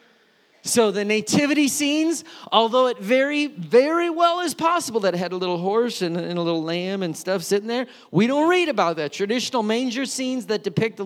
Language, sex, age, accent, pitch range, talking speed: English, male, 40-59, American, 185-245 Hz, 195 wpm